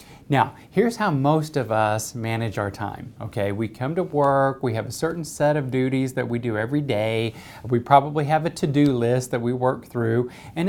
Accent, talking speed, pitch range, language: American, 210 wpm, 115-150 Hz, English